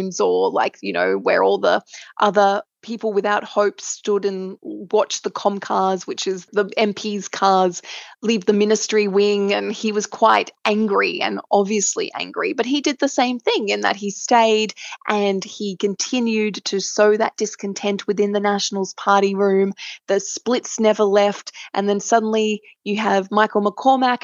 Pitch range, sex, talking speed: 200-240 Hz, female, 165 wpm